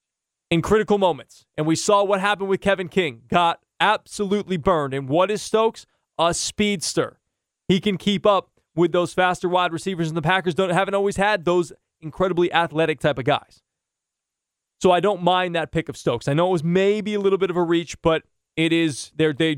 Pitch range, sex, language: 155-185 Hz, male, English